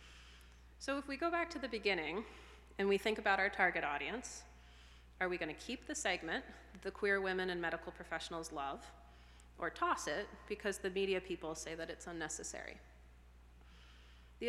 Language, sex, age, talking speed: English, female, 30-49, 165 wpm